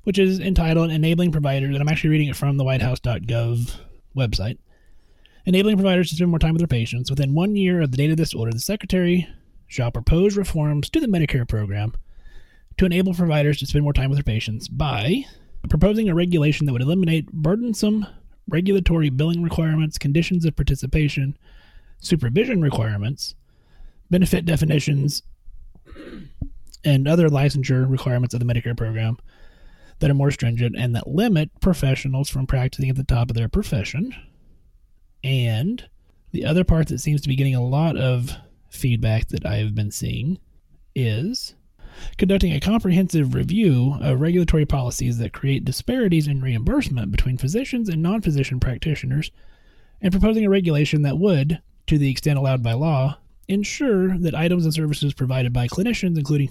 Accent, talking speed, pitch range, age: American, 160 wpm, 125-175 Hz, 30-49